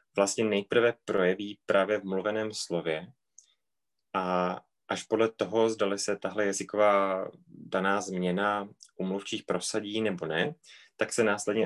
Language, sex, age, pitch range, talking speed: Czech, male, 20-39, 90-105 Hz, 125 wpm